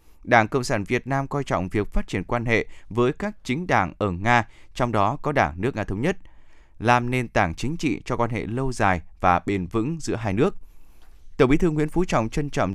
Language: Vietnamese